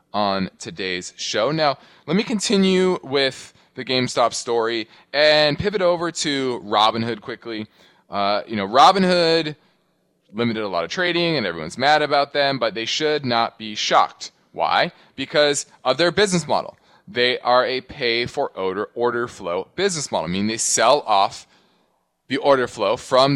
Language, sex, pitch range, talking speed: English, male, 115-175 Hz, 155 wpm